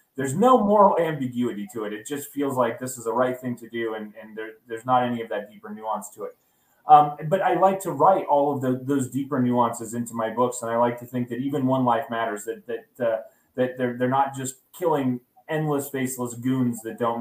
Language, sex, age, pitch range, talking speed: English, male, 30-49, 115-140 Hz, 225 wpm